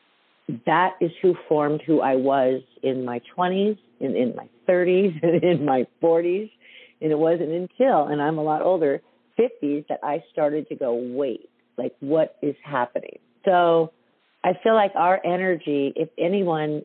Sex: female